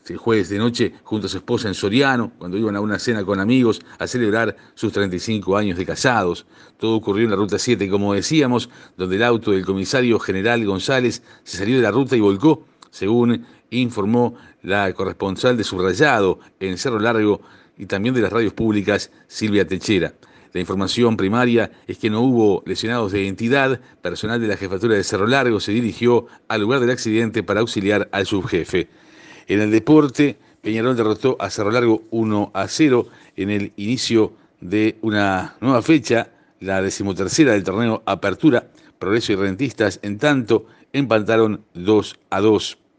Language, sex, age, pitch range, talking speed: Spanish, male, 50-69, 100-120 Hz, 170 wpm